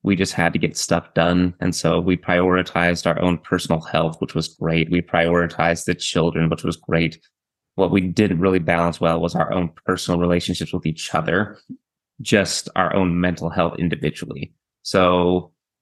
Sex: male